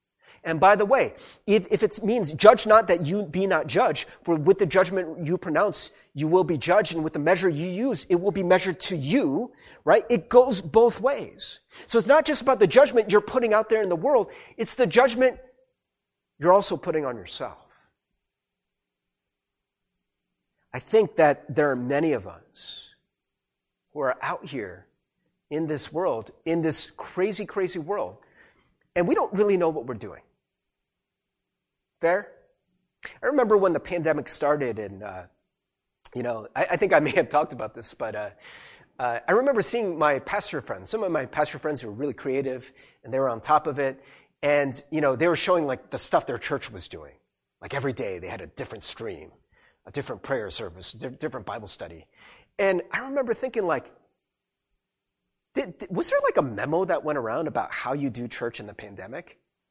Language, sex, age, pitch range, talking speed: English, male, 30-49, 150-225 Hz, 190 wpm